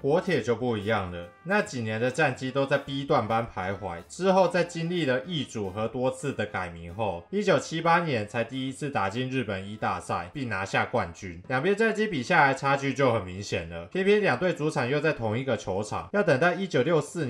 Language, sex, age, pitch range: Chinese, male, 20-39, 110-150 Hz